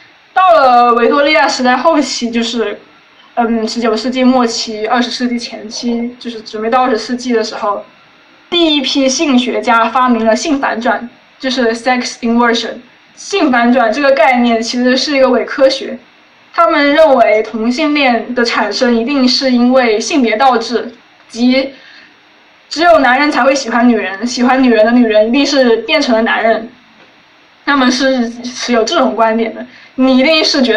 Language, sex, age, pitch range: Chinese, female, 20-39, 230-270 Hz